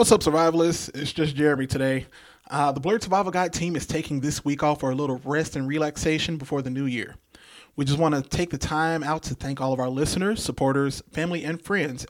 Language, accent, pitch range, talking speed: English, American, 140-170 Hz, 230 wpm